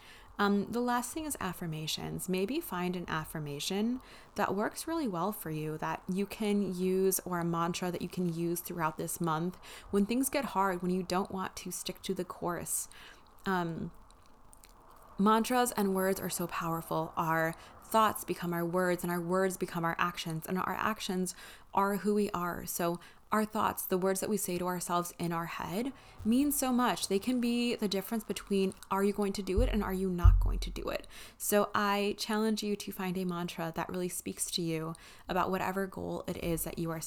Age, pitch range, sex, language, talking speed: 20-39, 170-205 Hz, female, English, 200 wpm